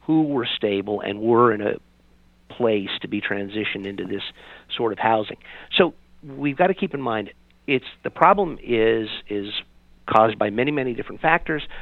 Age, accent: 50-69, American